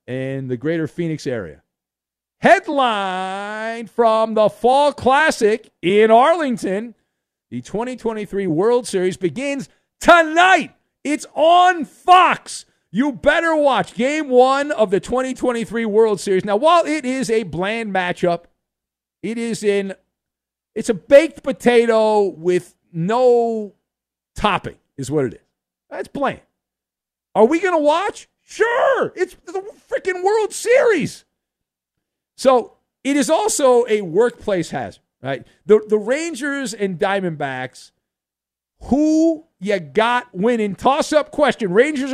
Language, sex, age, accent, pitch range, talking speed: English, male, 50-69, American, 175-280 Hz, 120 wpm